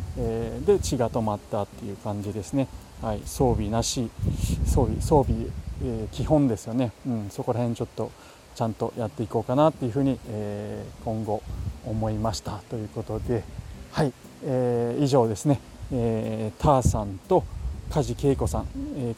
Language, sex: Japanese, male